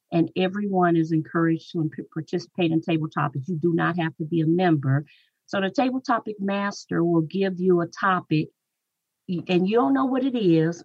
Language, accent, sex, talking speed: English, American, female, 190 wpm